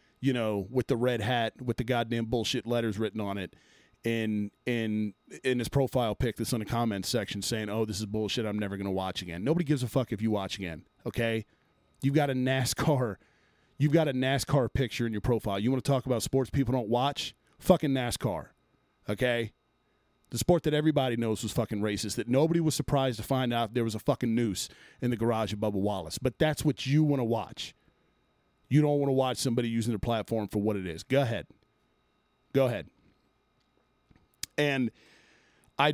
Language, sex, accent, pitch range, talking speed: English, male, American, 110-135 Hz, 200 wpm